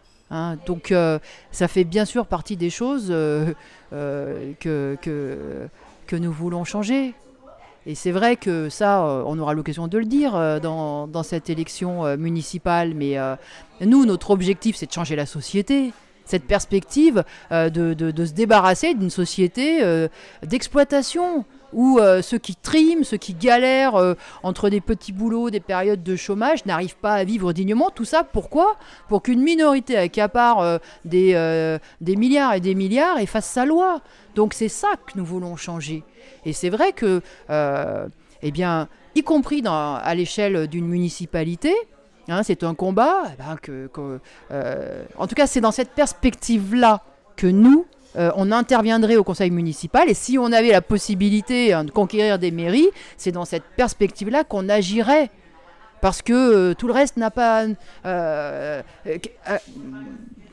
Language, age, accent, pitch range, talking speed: French, 40-59, French, 170-240 Hz, 170 wpm